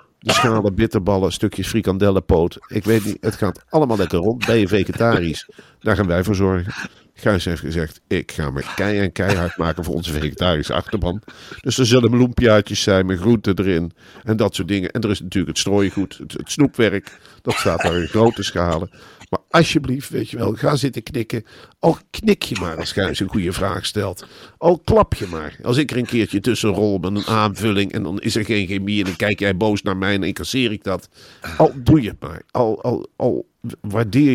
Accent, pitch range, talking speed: Dutch, 90-115 Hz, 205 wpm